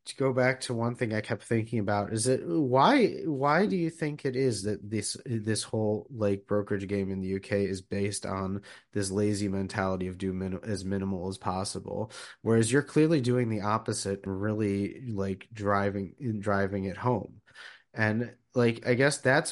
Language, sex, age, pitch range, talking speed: English, male, 30-49, 105-120 Hz, 185 wpm